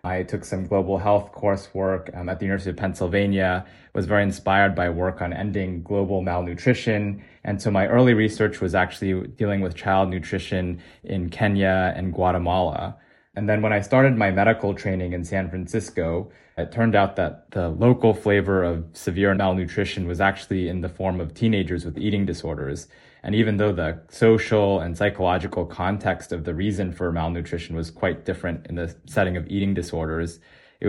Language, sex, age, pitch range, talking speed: English, male, 20-39, 85-100 Hz, 175 wpm